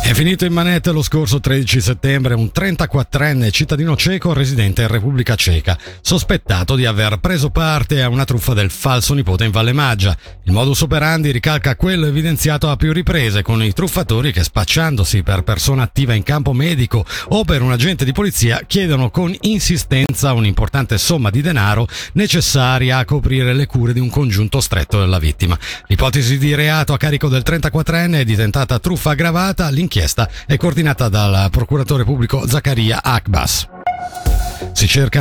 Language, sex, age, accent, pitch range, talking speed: Italian, male, 50-69, native, 110-150 Hz, 165 wpm